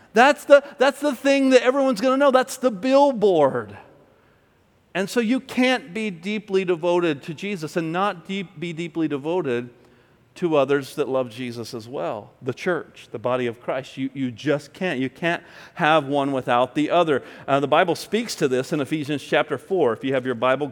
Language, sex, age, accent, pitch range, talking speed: English, male, 40-59, American, 130-185 Hz, 195 wpm